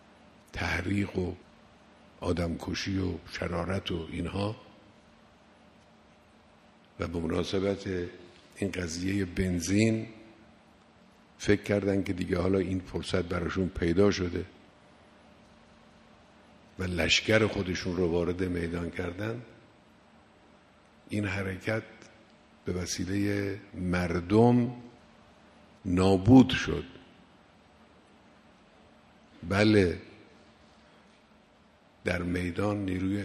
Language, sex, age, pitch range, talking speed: Persian, male, 50-69, 90-105 Hz, 75 wpm